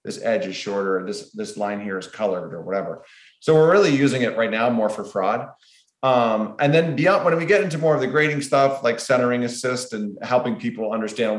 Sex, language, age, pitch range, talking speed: male, English, 30-49, 105-135 Hz, 220 wpm